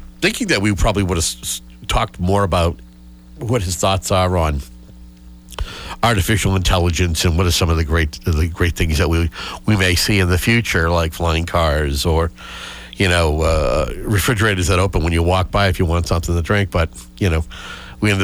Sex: male